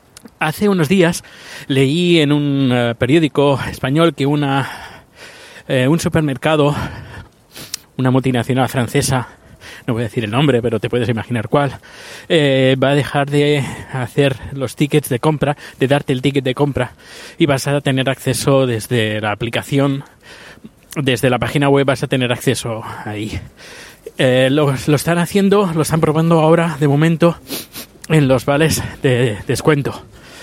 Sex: male